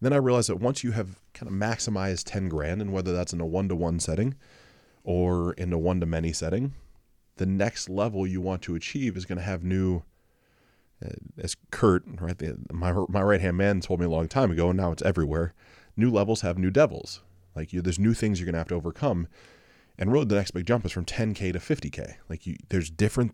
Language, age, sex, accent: English, 20-39, male, American